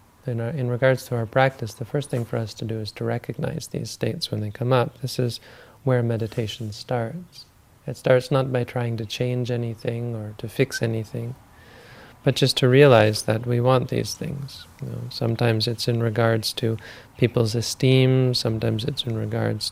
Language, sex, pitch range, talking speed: English, male, 115-125 Hz, 180 wpm